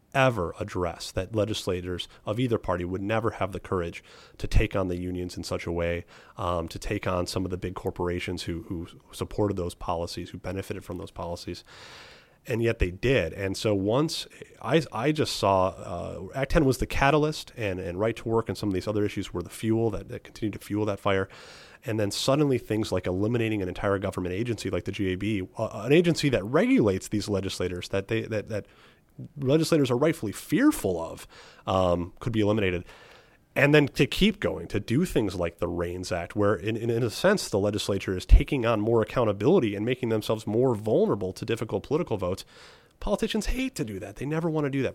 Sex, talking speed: male, 210 wpm